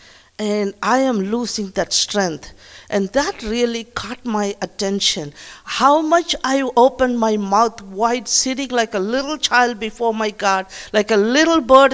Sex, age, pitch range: female, 50-69, 195-255 Hz